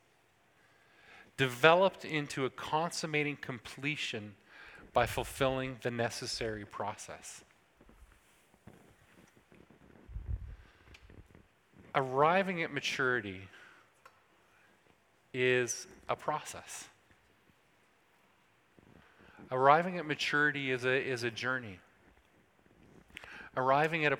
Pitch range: 120-145 Hz